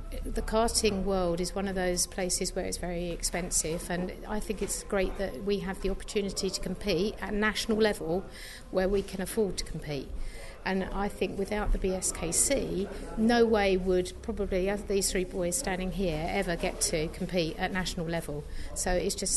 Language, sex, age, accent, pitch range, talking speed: English, female, 50-69, British, 180-200 Hz, 180 wpm